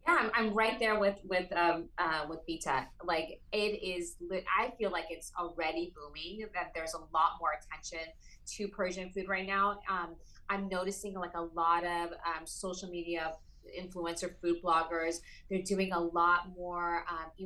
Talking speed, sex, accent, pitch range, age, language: 170 wpm, female, American, 165-195 Hz, 30-49, English